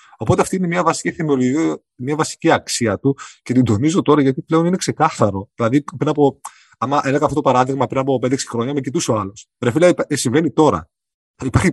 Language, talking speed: Greek, 195 wpm